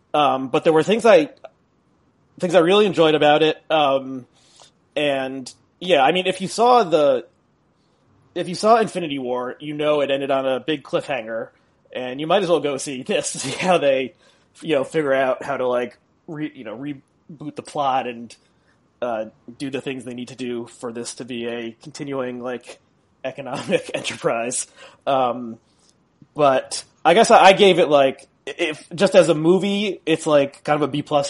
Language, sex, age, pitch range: English, male, 30-49, 130-170 Hz